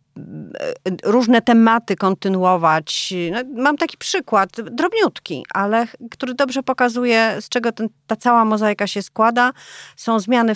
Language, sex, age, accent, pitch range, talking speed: Polish, female, 30-49, native, 205-265 Hz, 125 wpm